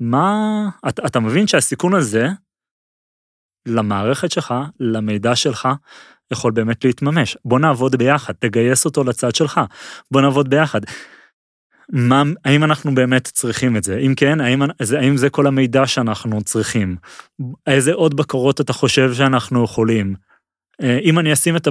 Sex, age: male, 30-49